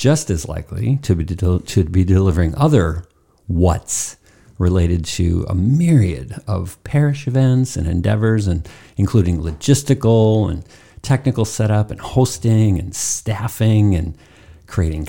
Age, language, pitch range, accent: 50-69, English, 90-115 Hz, American